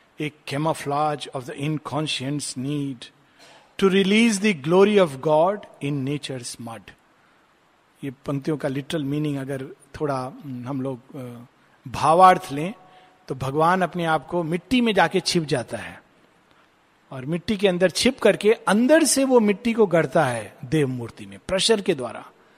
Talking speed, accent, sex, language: 155 wpm, native, male, Hindi